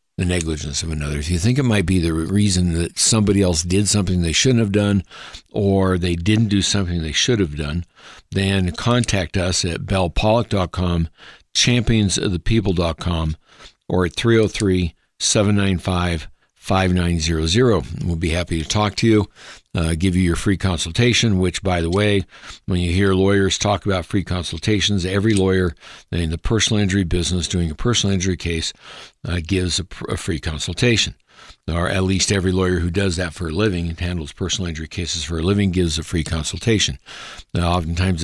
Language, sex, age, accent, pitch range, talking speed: English, male, 60-79, American, 85-100 Hz, 165 wpm